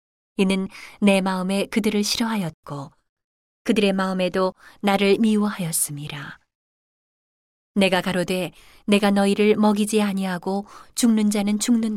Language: Korean